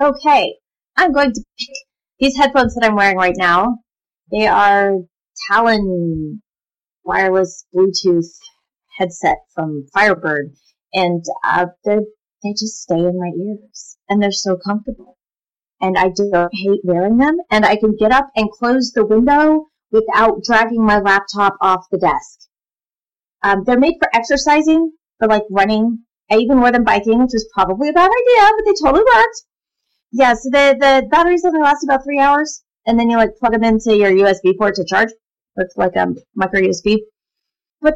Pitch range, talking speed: 190-275 Hz, 170 wpm